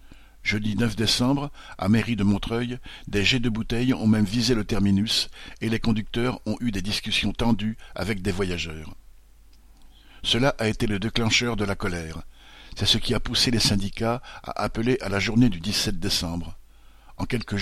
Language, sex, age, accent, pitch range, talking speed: French, male, 60-79, French, 100-120 Hz, 175 wpm